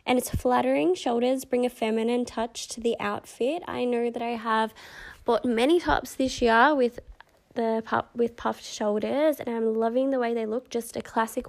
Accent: Australian